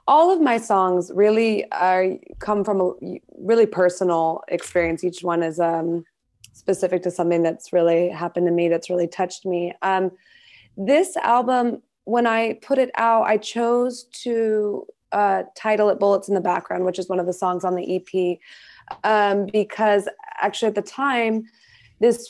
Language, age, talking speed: English, 20-39, 165 wpm